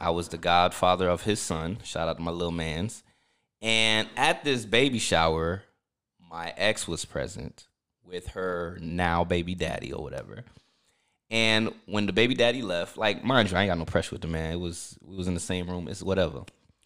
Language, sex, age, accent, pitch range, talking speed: English, male, 20-39, American, 90-110 Hz, 200 wpm